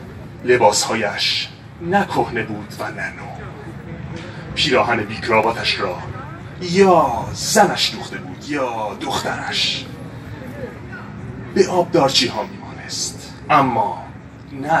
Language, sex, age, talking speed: Persian, male, 30-49, 80 wpm